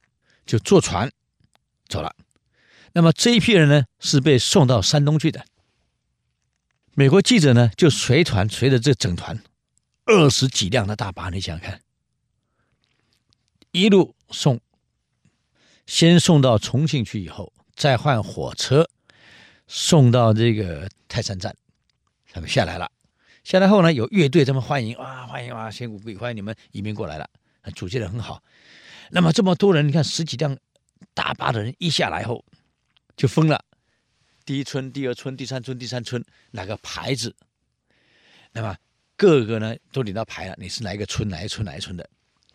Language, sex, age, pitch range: Chinese, male, 50-69, 105-155 Hz